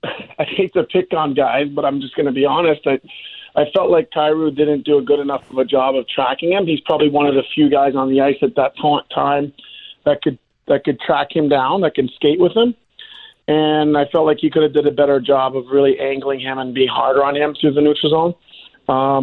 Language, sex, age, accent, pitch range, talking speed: English, male, 40-59, American, 135-150 Hz, 250 wpm